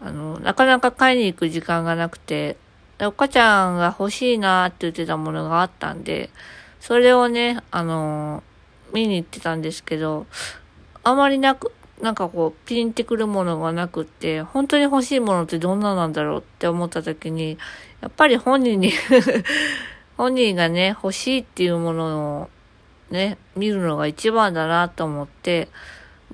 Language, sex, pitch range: Japanese, female, 155-200 Hz